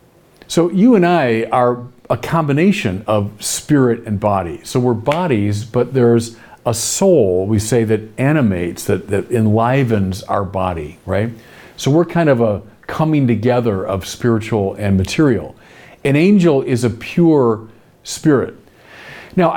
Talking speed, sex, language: 140 wpm, male, English